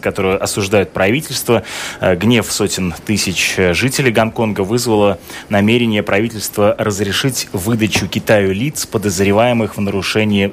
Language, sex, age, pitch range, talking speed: Russian, male, 20-39, 100-115 Hz, 105 wpm